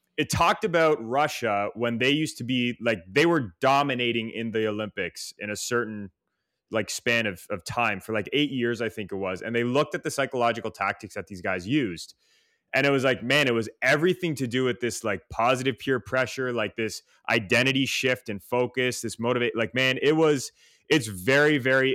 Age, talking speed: 20-39, 200 wpm